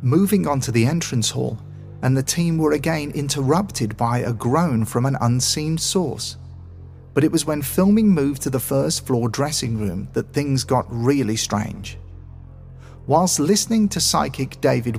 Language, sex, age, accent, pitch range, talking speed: English, male, 40-59, British, 110-145 Hz, 165 wpm